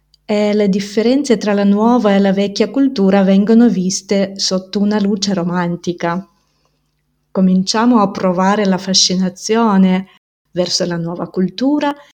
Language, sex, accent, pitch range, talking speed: Italian, female, native, 185-230 Hz, 120 wpm